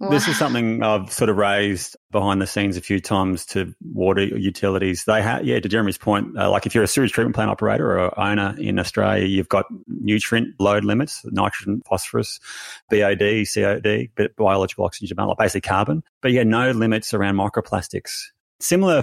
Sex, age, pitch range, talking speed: male, 30-49, 90-105 Hz, 175 wpm